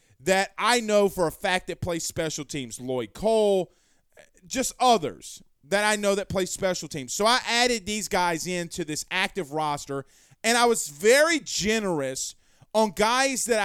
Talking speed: 165 wpm